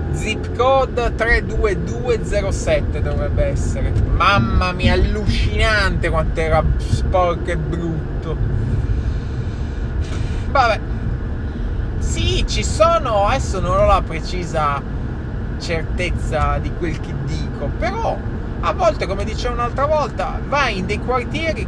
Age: 30-49